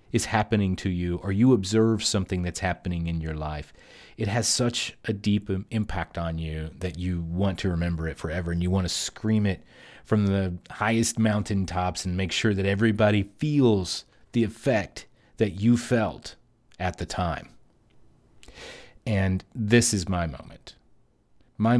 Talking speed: 160 wpm